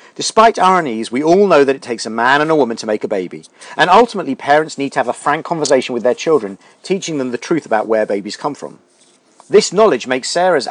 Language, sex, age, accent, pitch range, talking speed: English, male, 40-59, British, 130-160 Hz, 240 wpm